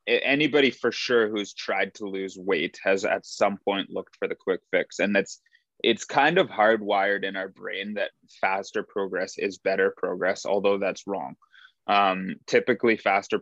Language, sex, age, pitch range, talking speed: English, male, 20-39, 100-130 Hz, 170 wpm